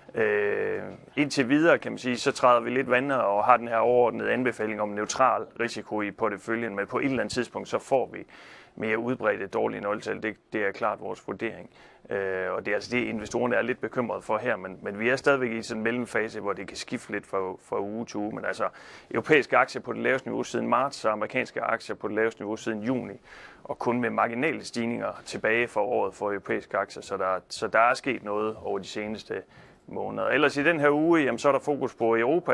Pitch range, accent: 110-130 Hz, native